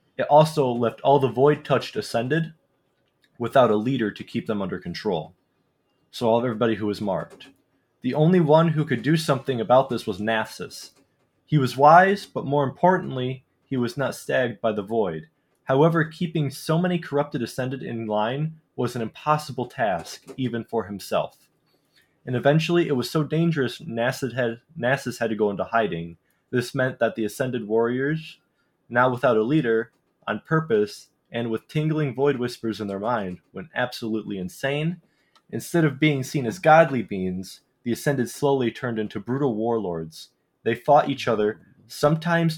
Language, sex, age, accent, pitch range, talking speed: English, male, 20-39, American, 110-150 Hz, 160 wpm